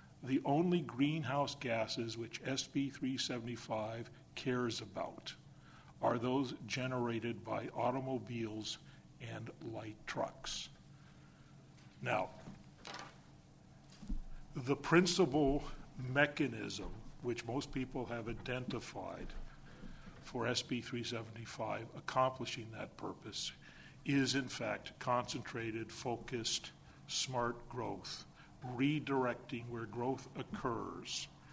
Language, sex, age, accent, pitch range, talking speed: English, male, 50-69, American, 115-135 Hz, 80 wpm